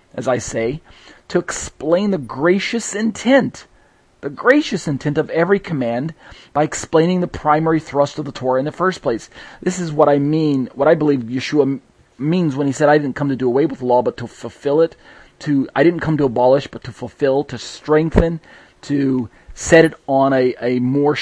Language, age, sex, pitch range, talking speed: English, 40-59, male, 130-165 Hz, 200 wpm